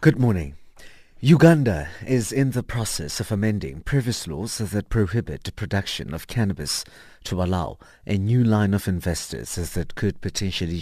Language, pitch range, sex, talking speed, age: English, 85-115 Hz, male, 145 wpm, 50-69